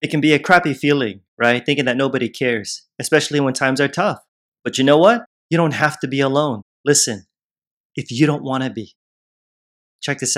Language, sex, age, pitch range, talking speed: English, male, 30-49, 125-155 Hz, 200 wpm